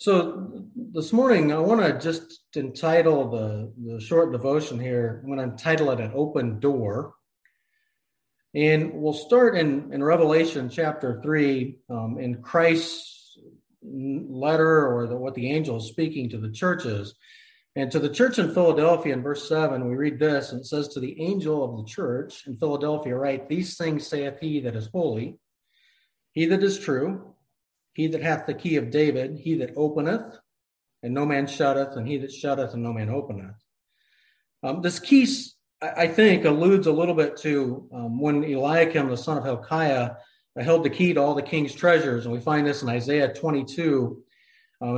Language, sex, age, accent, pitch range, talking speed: English, male, 40-59, American, 130-165 Hz, 175 wpm